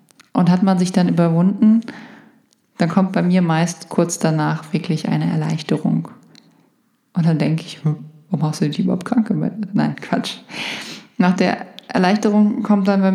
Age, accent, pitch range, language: 20-39, German, 170-210 Hz, German